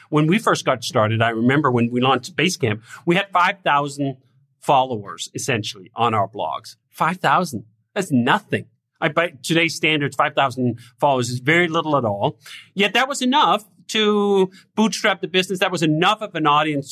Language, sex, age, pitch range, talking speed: English, male, 40-59, 125-175 Hz, 165 wpm